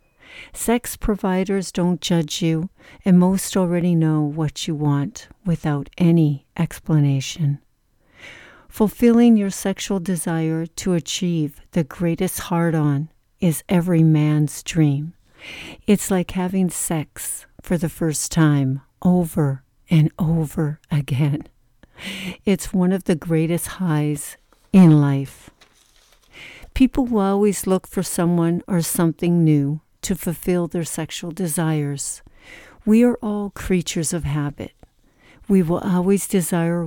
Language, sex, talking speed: English, female, 115 wpm